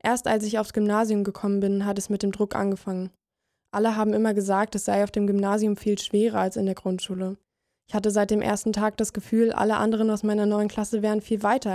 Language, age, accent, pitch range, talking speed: German, 20-39, German, 200-220 Hz, 230 wpm